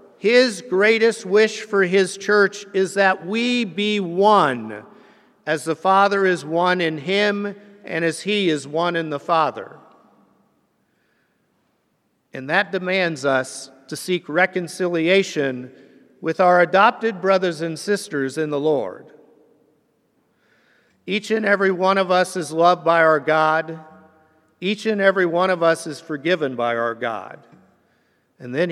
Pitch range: 160-205 Hz